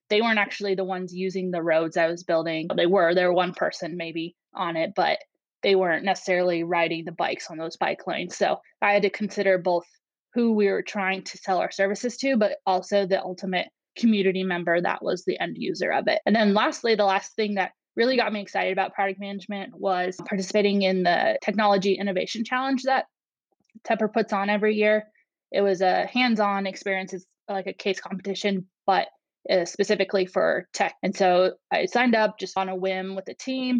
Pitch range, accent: 185-210 Hz, American